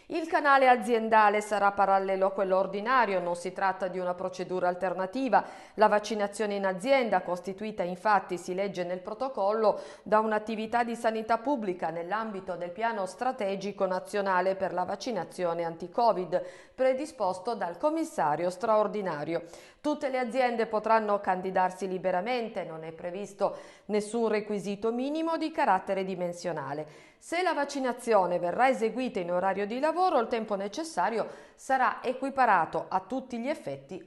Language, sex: Italian, female